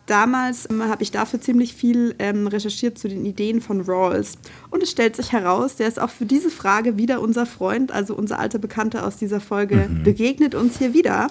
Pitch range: 205-245 Hz